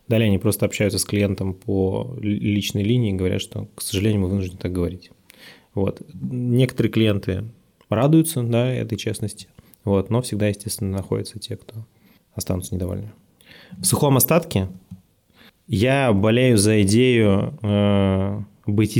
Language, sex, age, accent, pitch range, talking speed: Russian, male, 20-39, native, 95-115 Hz, 135 wpm